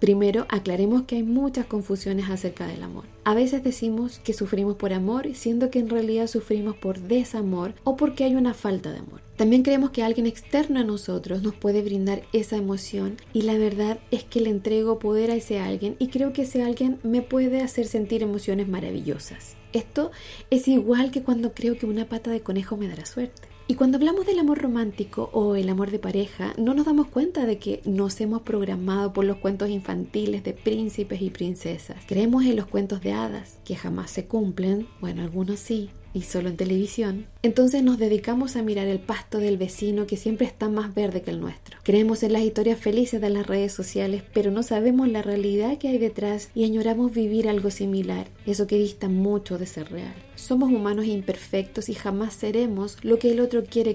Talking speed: 200 wpm